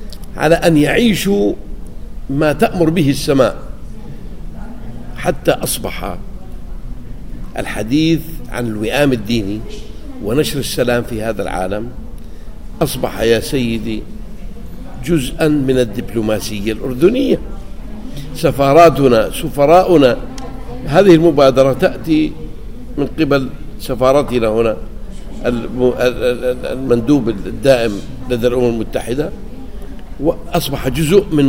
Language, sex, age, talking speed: Arabic, male, 60-79, 80 wpm